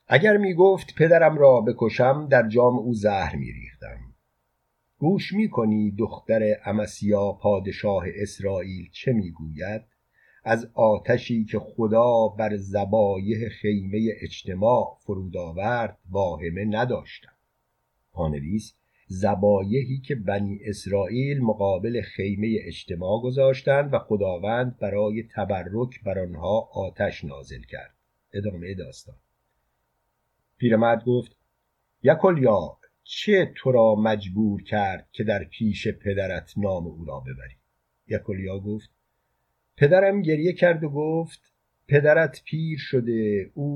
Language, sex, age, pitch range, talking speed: Persian, male, 50-69, 100-130 Hz, 110 wpm